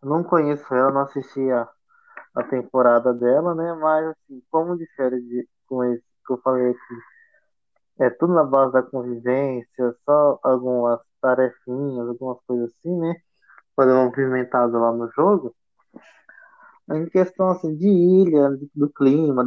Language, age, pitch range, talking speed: Portuguese, 20-39, 125-170 Hz, 140 wpm